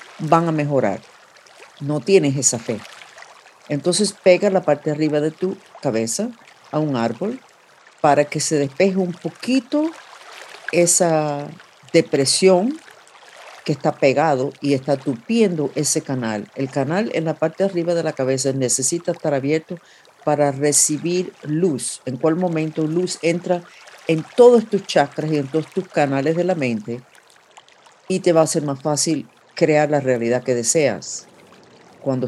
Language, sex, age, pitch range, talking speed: Spanish, female, 50-69, 135-175 Hz, 150 wpm